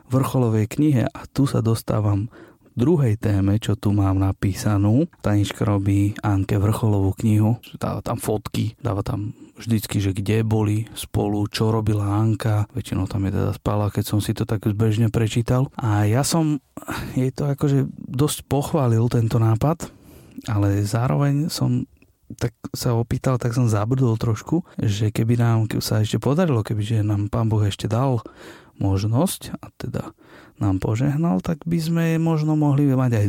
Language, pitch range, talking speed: Slovak, 105-130 Hz, 155 wpm